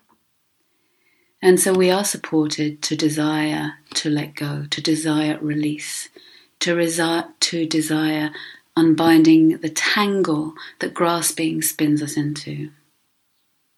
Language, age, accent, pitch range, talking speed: English, 40-59, British, 155-185 Hz, 105 wpm